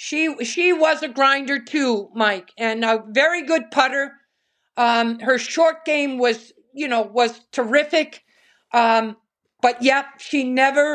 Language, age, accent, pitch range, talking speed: English, 50-69, American, 230-290 Hz, 145 wpm